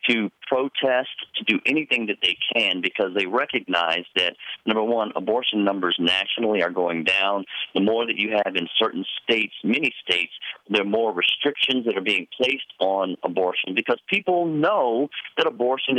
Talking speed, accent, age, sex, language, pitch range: 170 wpm, American, 50-69, male, English, 105-145 Hz